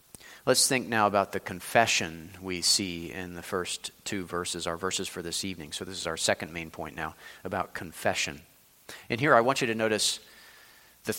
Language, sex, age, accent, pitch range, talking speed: English, male, 40-59, American, 90-105 Hz, 195 wpm